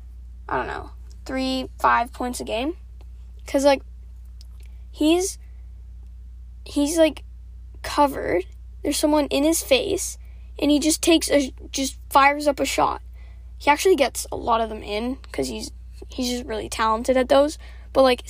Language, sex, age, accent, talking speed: English, female, 10-29, American, 155 wpm